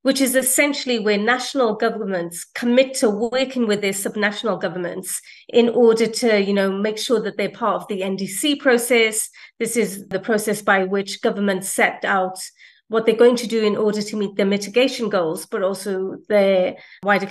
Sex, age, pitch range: female, 30-49, 200-245 Hz